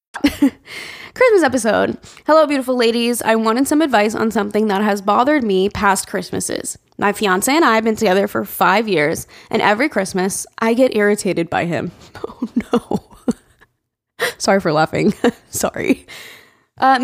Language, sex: English, female